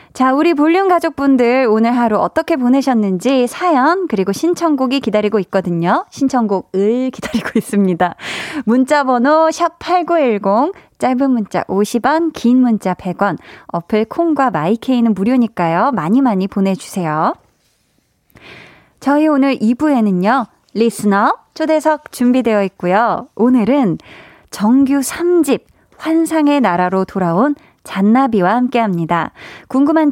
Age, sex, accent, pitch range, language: 20-39, female, native, 200-290 Hz, Korean